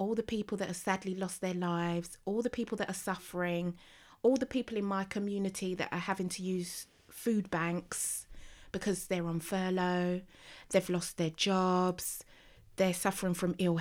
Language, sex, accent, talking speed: English, female, British, 175 wpm